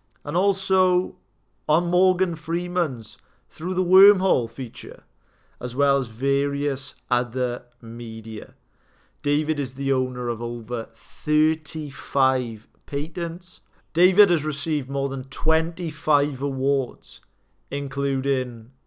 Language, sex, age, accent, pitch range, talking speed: English, male, 40-59, British, 125-150 Hz, 100 wpm